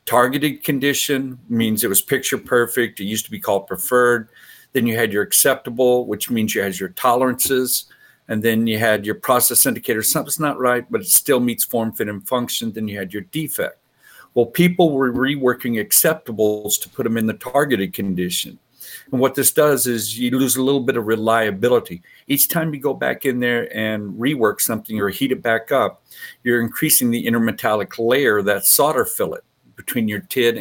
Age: 50-69